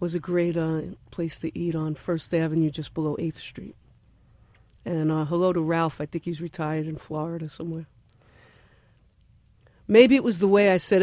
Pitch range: 150-190 Hz